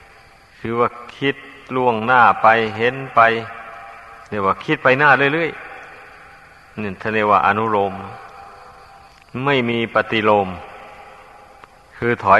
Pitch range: 105-120 Hz